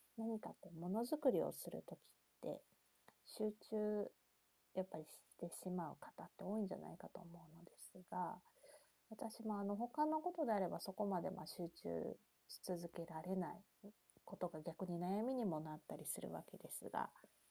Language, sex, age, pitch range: Japanese, female, 30-49, 170-215 Hz